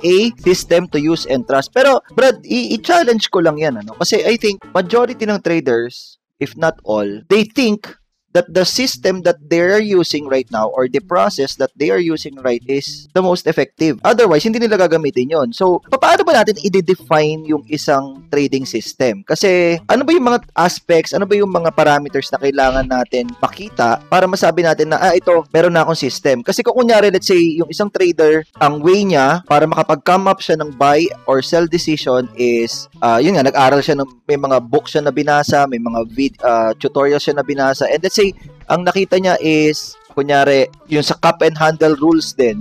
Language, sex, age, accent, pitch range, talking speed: English, male, 20-39, Filipino, 140-190 Hz, 195 wpm